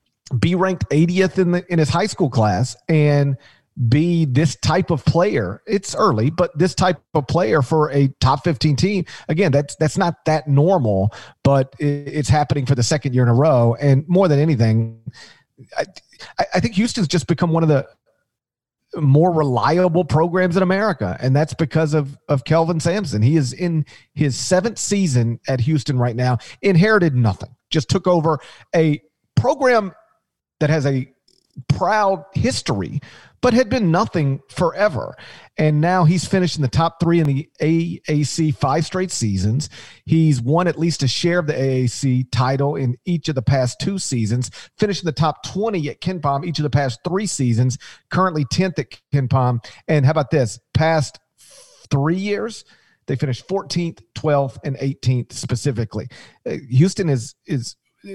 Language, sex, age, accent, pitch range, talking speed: English, male, 40-59, American, 130-175 Hz, 170 wpm